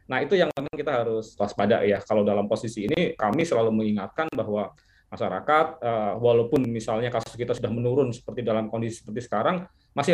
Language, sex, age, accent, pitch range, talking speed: Indonesian, male, 20-39, native, 115-145 Hz, 170 wpm